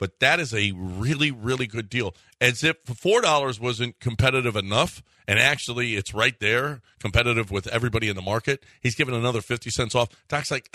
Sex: male